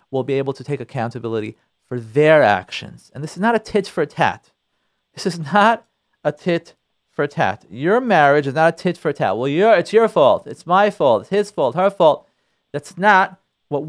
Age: 40-59